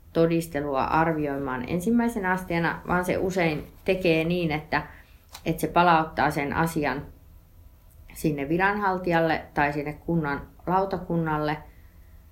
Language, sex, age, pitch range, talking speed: Finnish, female, 30-49, 130-175 Hz, 100 wpm